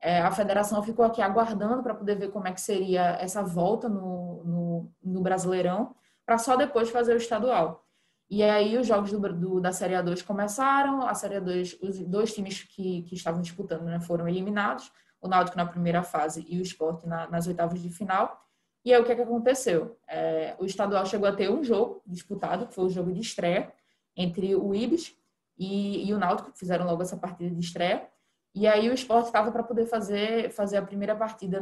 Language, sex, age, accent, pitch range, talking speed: Portuguese, female, 20-39, Brazilian, 180-230 Hz, 205 wpm